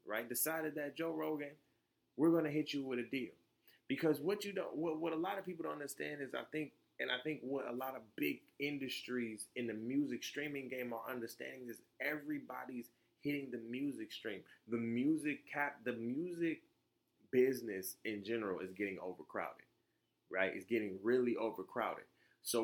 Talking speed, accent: 180 wpm, American